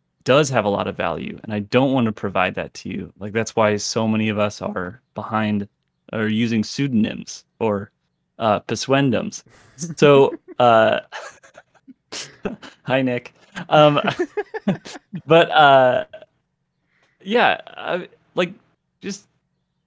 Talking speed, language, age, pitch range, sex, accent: 125 wpm, English, 30-49, 110-135 Hz, male, American